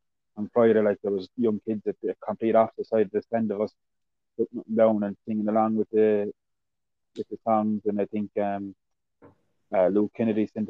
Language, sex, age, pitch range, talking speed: English, male, 20-39, 105-115 Hz, 190 wpm